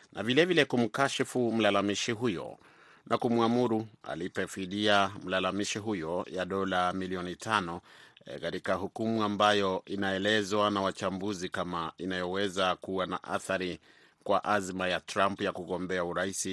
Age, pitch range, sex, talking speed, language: 30-49, 95-110 Hz, male, 120 wpm, Swahili